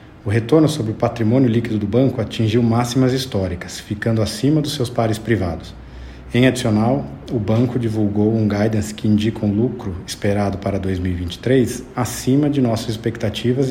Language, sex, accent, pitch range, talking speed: Portuguese, male, Brazilian, 105-125 Hz, 155 wpm